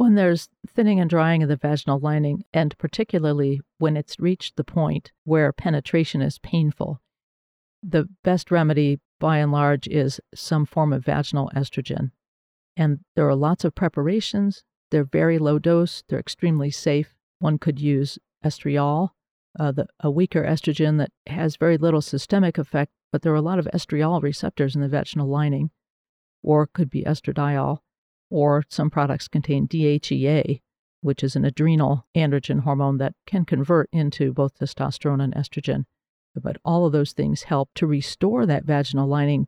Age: 50-69